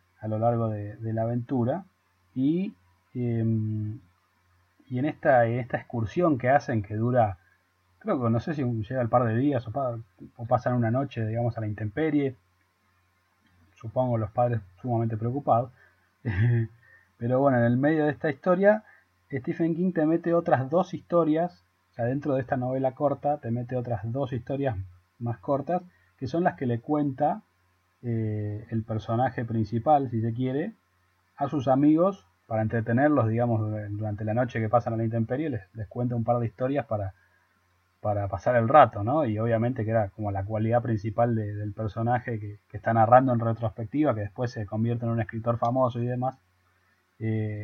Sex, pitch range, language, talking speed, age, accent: male, 105-130 Hz, English, 175 wpm, 30-49, Argentinian